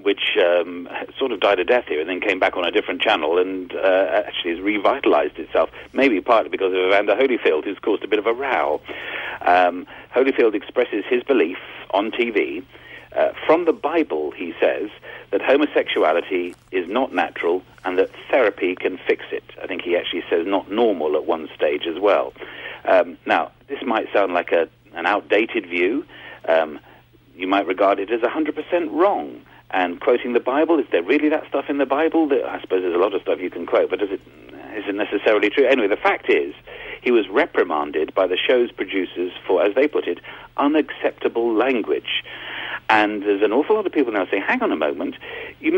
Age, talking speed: 40-59, 195 wpm